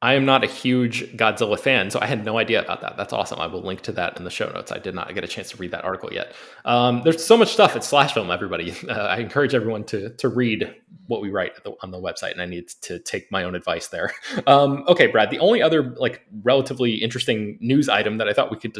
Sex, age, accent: male, 20-39, American